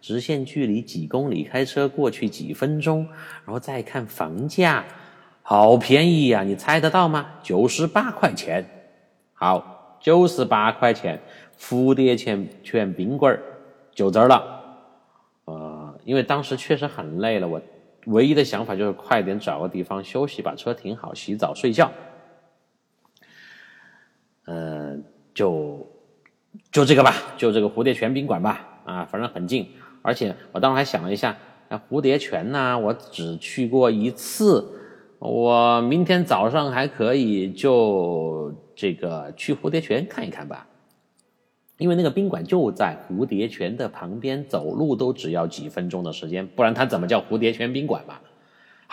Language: Chinese